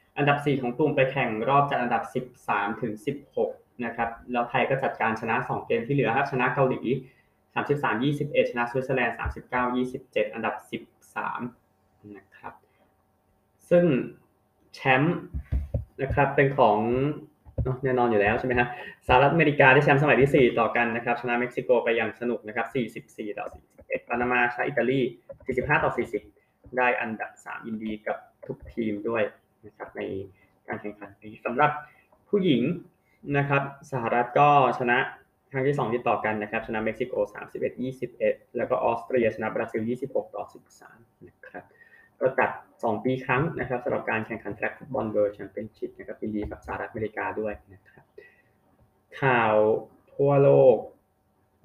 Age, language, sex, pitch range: 20-39, Thai, male, 105-140 Hz